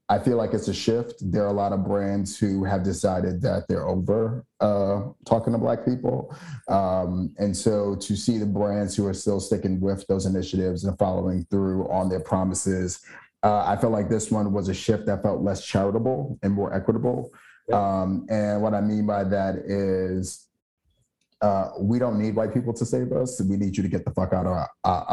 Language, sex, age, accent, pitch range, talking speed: English, male, 30-49, American, 95-105 Hz, 205 wpm